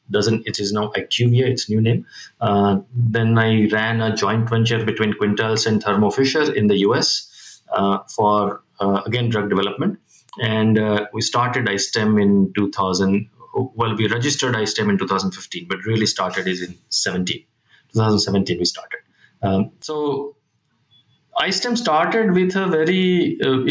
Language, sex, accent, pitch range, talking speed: English, male, Indian, 105-135 Hz, 150 wpm